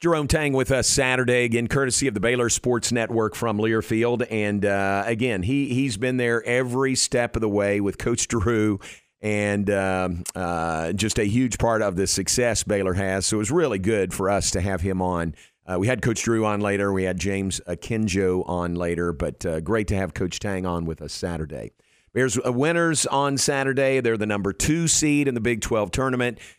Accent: American